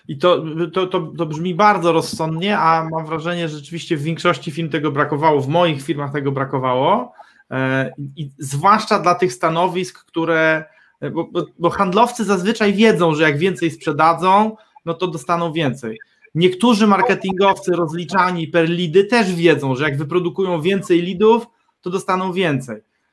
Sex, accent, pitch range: male, native, 160-195 Hz